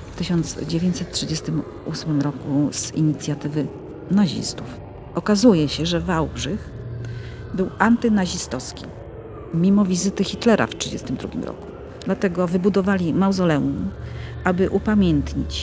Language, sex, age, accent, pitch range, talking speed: Polish, female, 40-59, native, 130-180 Hz, 90 wpm